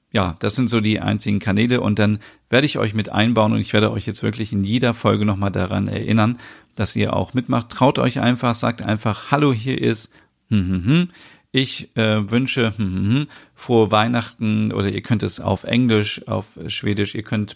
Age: 40-59